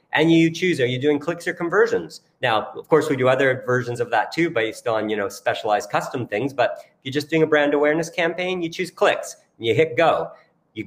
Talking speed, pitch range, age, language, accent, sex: 235 wpm, 125-165 Hz, 40-59, English, American, male